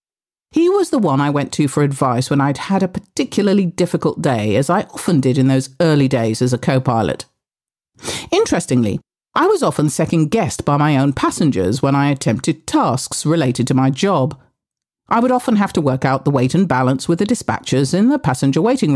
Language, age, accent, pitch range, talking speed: English, 40-59, British, 135-225 Hz, 195 wpm